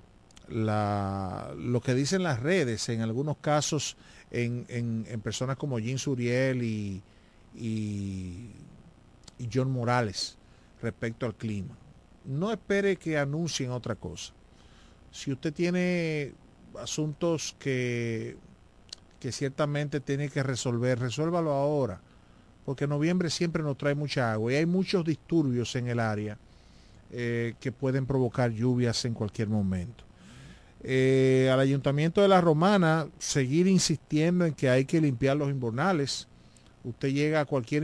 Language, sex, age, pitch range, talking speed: Spanish, male, 40-59, 115-150 Hz, 130 wpm